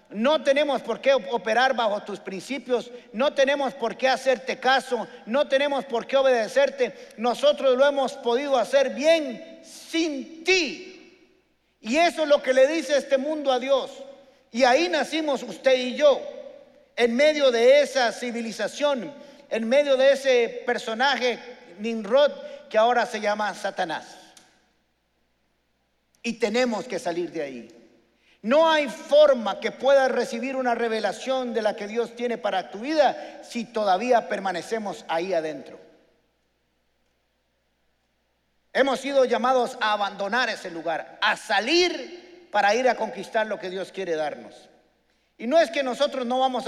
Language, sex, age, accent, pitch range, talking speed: Spanish, male, 50-69, Mexican, 210-275 Hz, 145 wpm